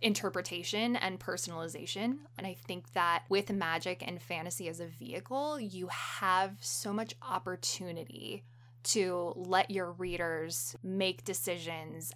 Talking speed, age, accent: 125 wpm, 20-39, American